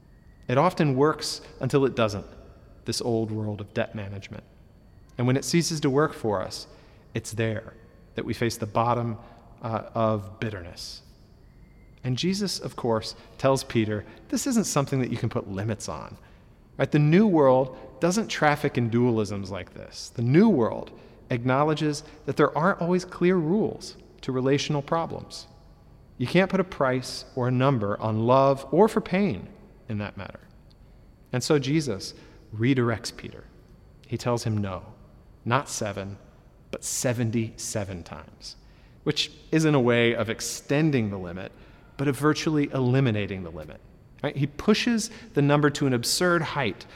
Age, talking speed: 40-59, 155 wpm